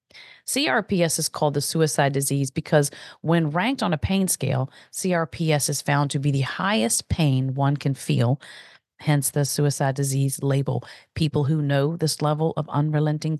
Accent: American